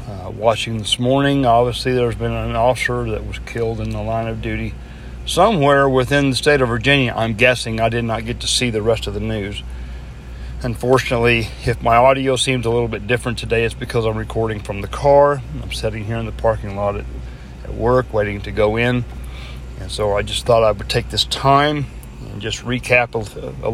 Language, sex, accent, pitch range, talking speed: English, male, American, 100-125 Hz, 205 wpm